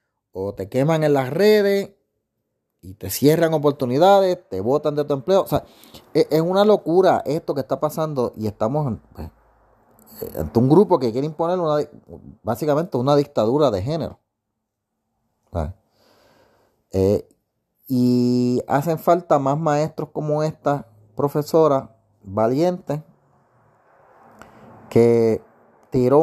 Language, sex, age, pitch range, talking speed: Spanish, male, 30-49, 110-150 Hz, 120 wpm